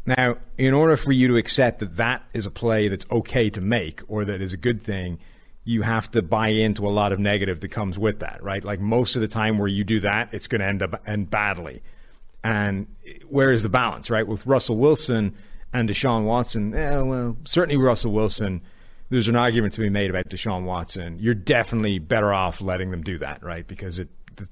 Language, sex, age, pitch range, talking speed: English, male, 30-49, 95-115 Hz, 220 wpm